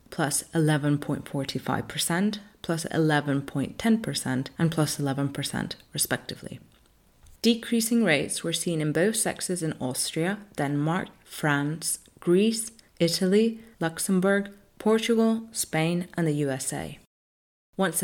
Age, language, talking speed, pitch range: 30-49, English, 95 wpm, 145-190 Hz